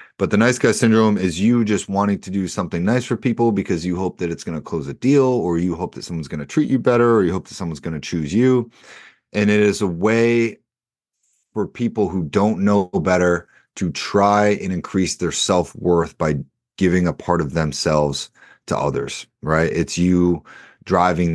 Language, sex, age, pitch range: English, male, 30-49, 80-100 Hz